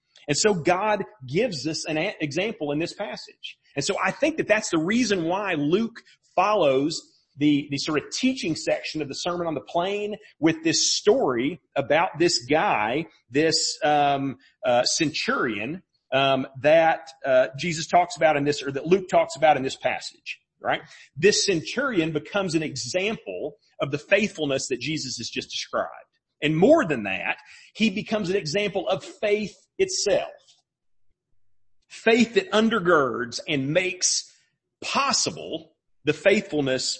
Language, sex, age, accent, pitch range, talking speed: English, male, 40-59, American, 150-210 Hz, 150 wpm